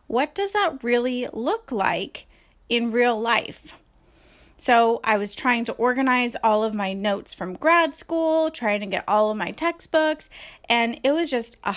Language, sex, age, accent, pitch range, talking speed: English, female, 20-39, American, 210-275 Hz, 175 wpm